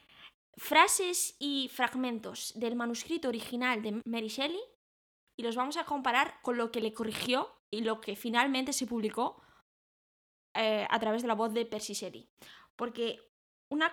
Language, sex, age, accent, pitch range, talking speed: Spanish, female, 10-29, Spanish, 215-250 Hz, 145 wpm